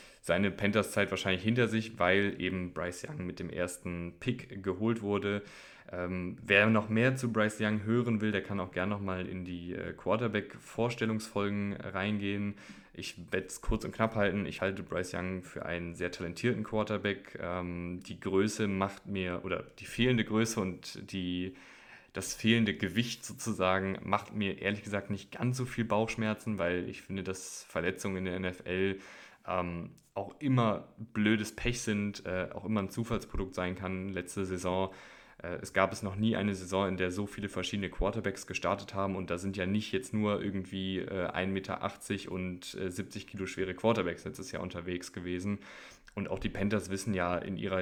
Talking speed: 175 wpm